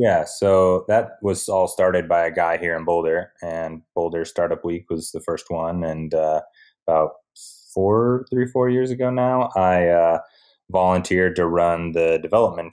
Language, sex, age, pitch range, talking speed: English, male, 20-39, 80-90 Hz, 170 wpm